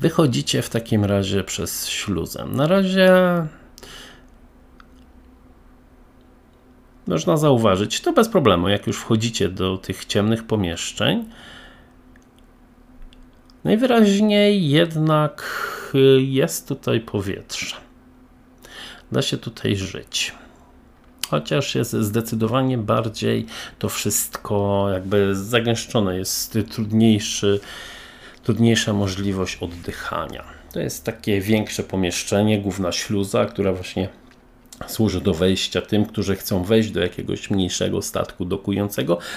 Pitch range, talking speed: 95-125 Hz, 95 wpm